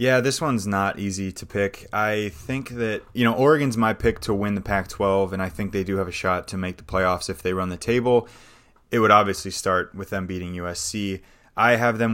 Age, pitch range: 20-39, 95-115 Hz